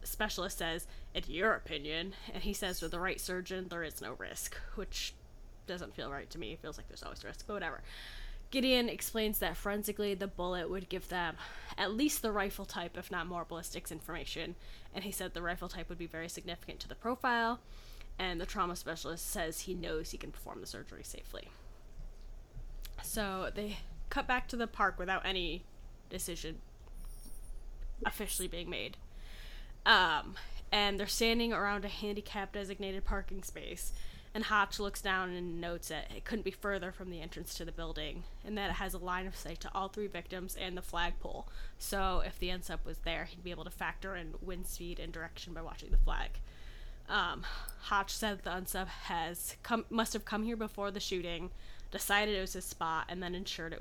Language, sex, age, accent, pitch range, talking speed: English, female, 10-29, American, 165-200 Hz, 195 wpm